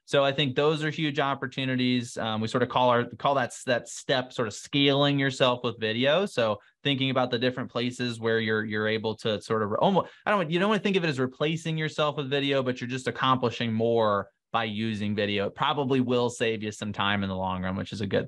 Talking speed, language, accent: 245 wpm, English, American